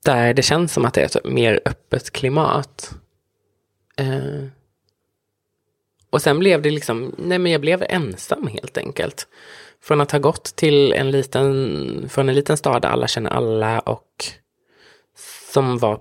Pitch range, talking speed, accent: 120-165 Hz, 155 wpm, Swedish